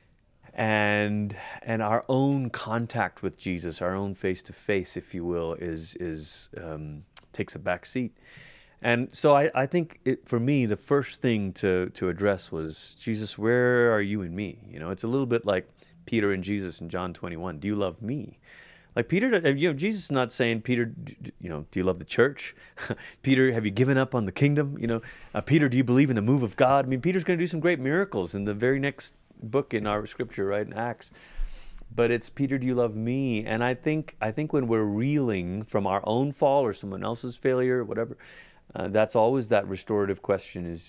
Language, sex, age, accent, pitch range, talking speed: English, male, 30-49, American, 100-130 Hz, 220 wpm